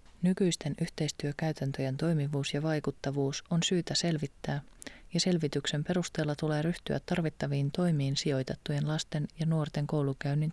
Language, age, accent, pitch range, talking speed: Finnish, 30-49, native, 110-165 Hz, 115 wpm